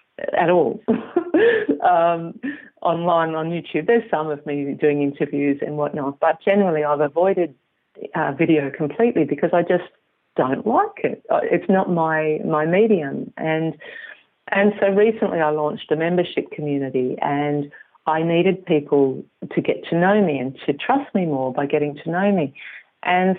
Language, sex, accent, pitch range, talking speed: English, female, Australian, 150-195 Hz, 155 wpm